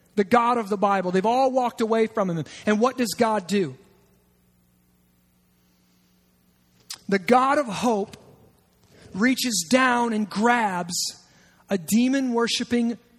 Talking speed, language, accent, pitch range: 120 wpm, English, American, 185-250 Hz